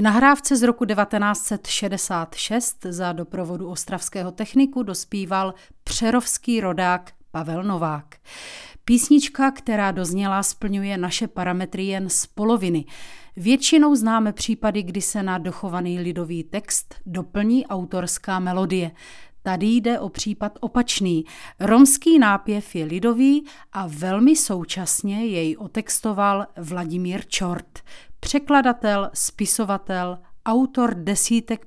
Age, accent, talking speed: 30-49, native, 105 wpm